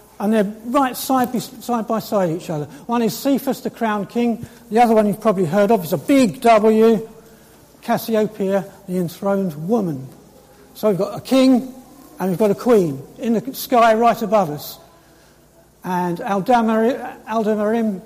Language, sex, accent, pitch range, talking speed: English, male, British, 195-240 Hz, 165 wpm